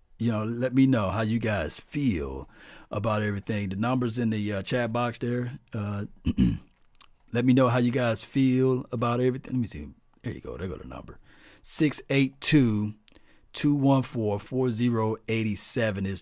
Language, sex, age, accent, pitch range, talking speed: English, male, 40-59, American, 110-140 Hz, 150 wpm